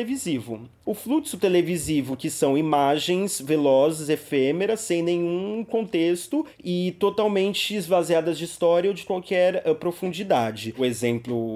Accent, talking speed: Brazilian, 125 wpm